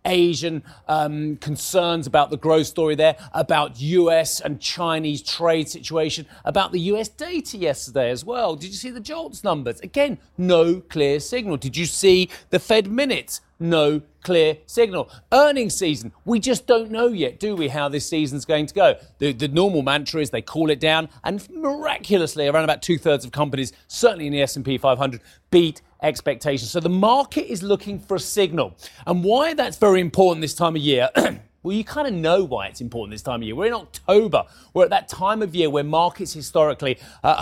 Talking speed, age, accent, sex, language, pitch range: 195 wpm, 40-59, British, male, English, 145-195 Hz